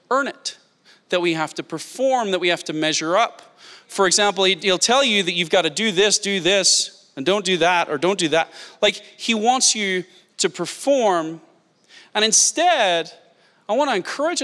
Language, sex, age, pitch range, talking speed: English, male, 30-49, 180-270 Hz, 190 wpm